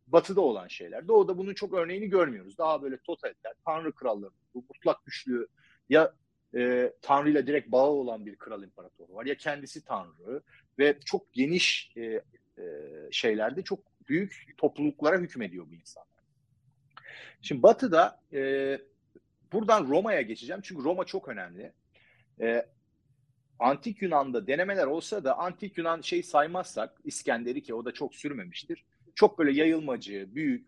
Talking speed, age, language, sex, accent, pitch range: 135 wpm, 40-59, Turkish, male, native, 130-195 Hz